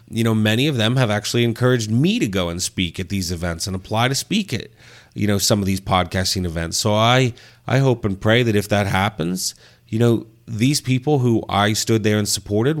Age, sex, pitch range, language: 30-49, male, 95-115 Hz, English